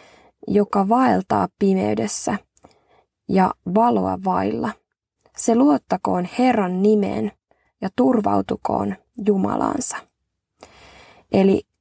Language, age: Finnish, 20-39